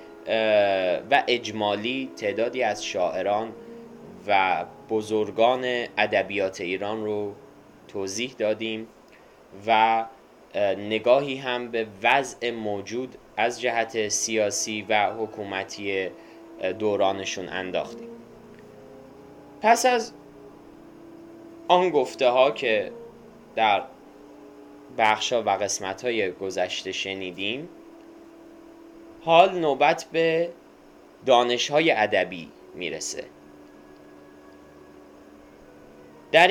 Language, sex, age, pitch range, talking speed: Persian, male, 10-29, 100-160 Hz, 75 wpm